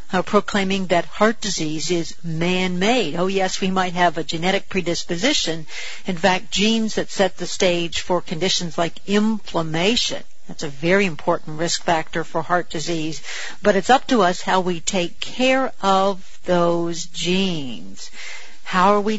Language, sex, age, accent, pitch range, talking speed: English, female, 50-69, American, 175-205 Hz, 155 wpm